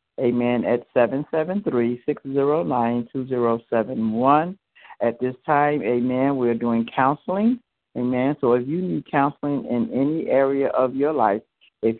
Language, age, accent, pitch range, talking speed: English, 60-79, American, 120-145 Hz, 115 wpm